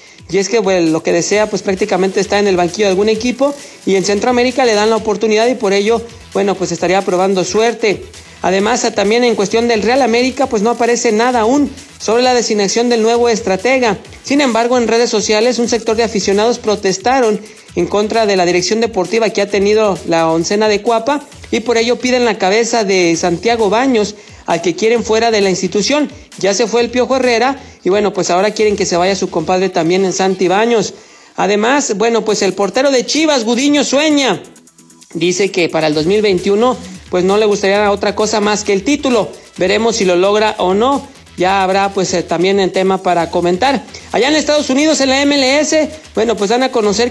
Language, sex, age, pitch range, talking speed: Spanish, male, 50-69, 195-245 Hz, 200 wpm